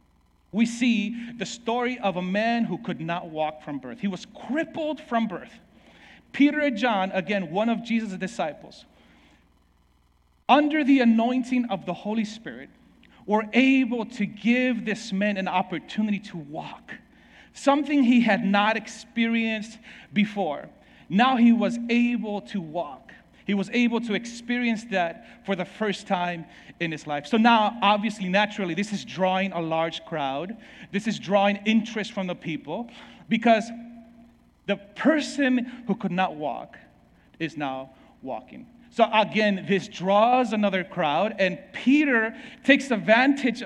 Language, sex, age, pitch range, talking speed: English, male, 40-59, 185-235 Hz, 145 wpm